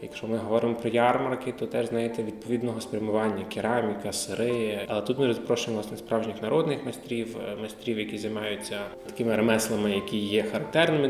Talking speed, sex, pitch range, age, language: 145 wpm, male, 110-120 Hz, 20-39, Ukrainian